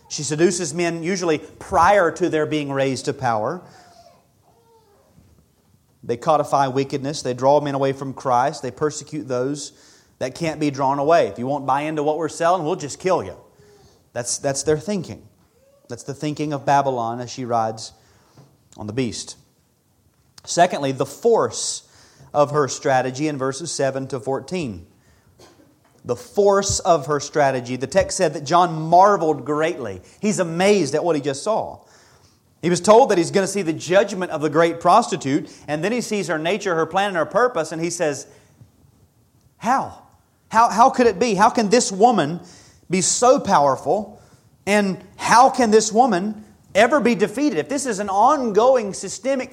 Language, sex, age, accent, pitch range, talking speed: English, male, 30-49, American, 135-195 Hz, 170 wpm